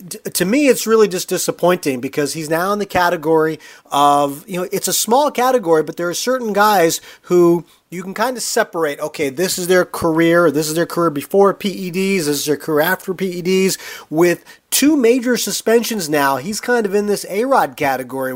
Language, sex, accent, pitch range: English, male, American, 150-195 Hz